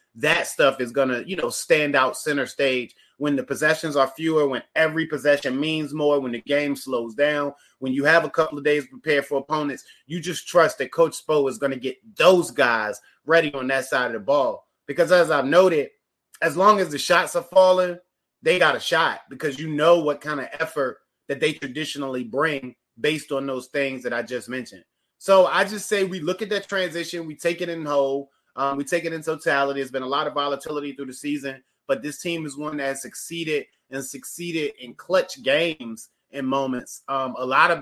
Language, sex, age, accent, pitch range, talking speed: English, male, 30-49, American, 135-170 Hz, 215 wpm